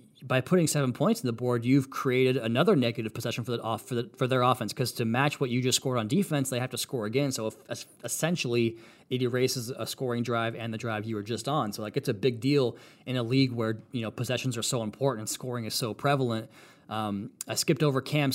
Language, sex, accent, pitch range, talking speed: English, male, American, 120-140 Hz, 245 wpm